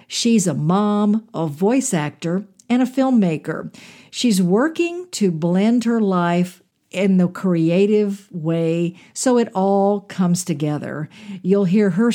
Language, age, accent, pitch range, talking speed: English, 50-69, American, 165-210 Hz, 135 wpm